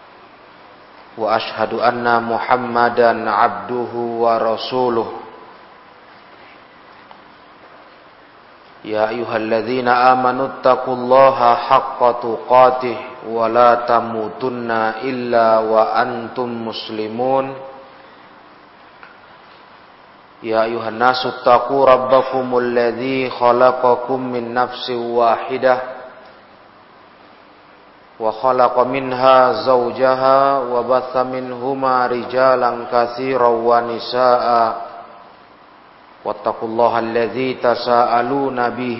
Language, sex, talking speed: Indonesian, male, 60 wpm